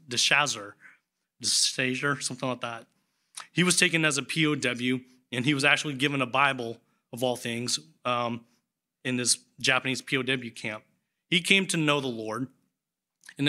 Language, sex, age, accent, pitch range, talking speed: English, male, 30-49, American, 130-155 Hz, 165 wpm